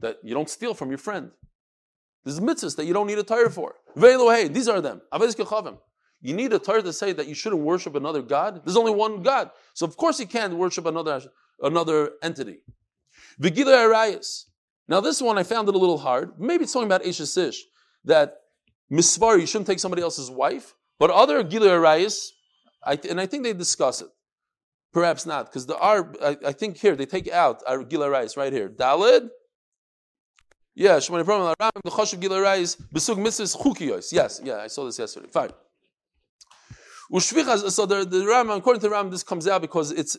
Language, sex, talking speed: English, male, 165 wpm